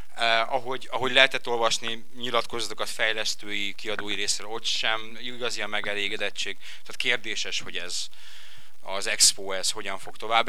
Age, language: 30-49, Hungarian